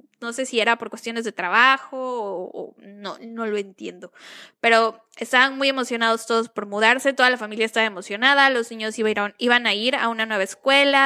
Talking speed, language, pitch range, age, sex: 205 wpm, Spanish, 220-265 Hz, 10-29, female